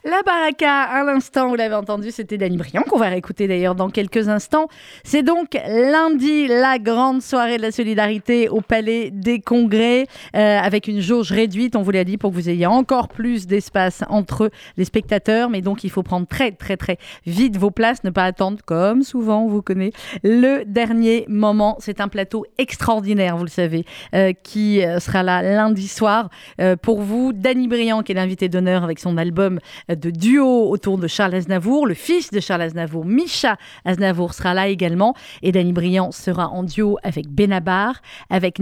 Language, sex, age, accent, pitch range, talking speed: French, female, 30-49, French, 190-250 Hz, 185 wpm